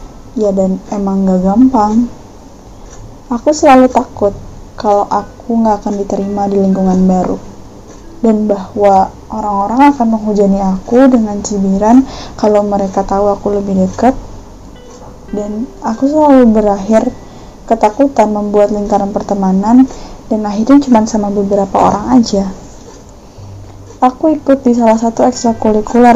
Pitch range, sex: 200-235 Hz, female